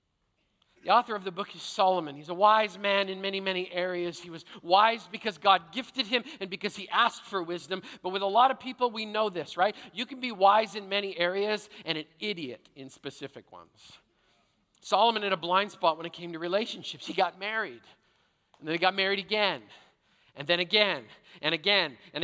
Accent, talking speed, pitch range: American, 205 wpm, 170-205 Hz